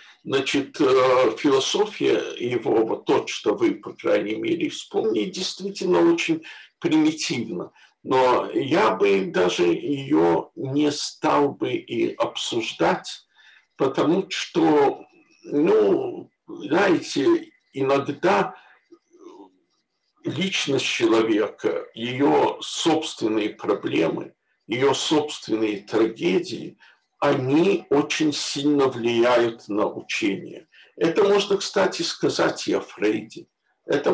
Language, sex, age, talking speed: Russian, male, 60-79, 90 wpm